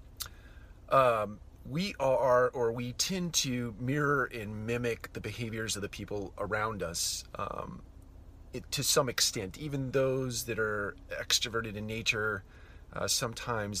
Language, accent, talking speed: English, American, 135 wpm